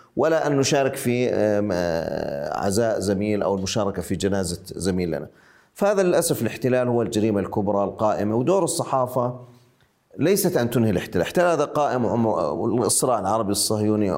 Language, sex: Arabic, male